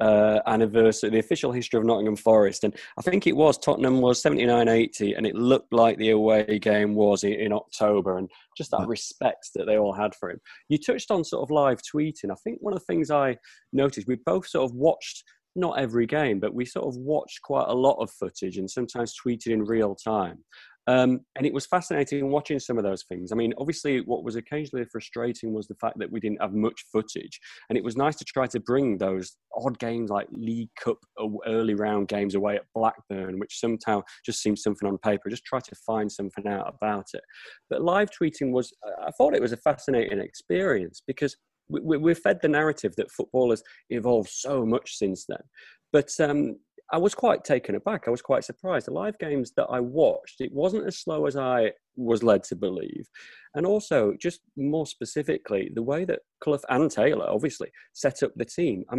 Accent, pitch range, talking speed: British, 105-145 Hz, 210 wpm